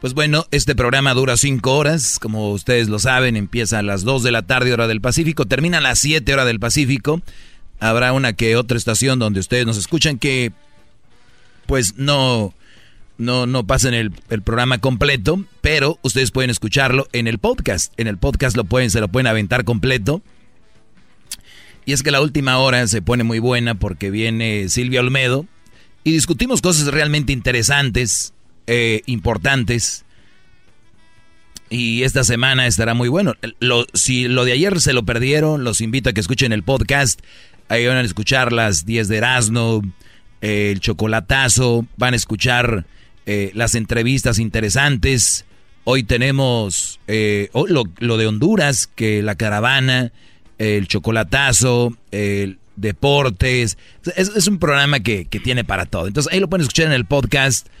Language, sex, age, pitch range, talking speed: Spanish, male, 40-59, 110-135 Hz, 160 wpm